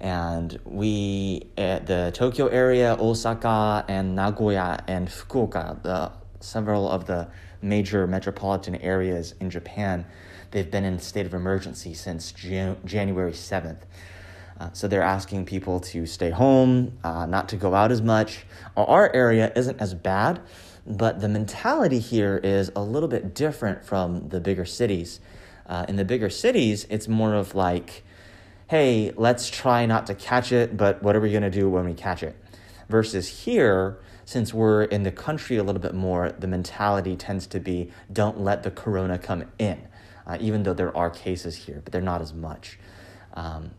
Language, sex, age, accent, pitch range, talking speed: English, male, 30-49, American, 90-105 Hz, 170 wpm